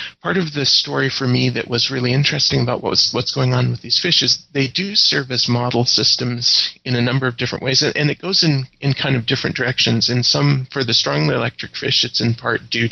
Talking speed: 235 wpm